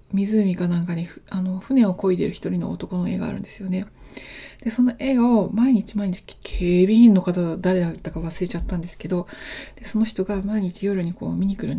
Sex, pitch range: female, 170-210 Hz